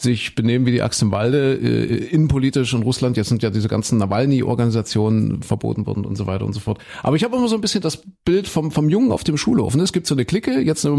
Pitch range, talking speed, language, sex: 105-145 Hz, 260 wpm, German, male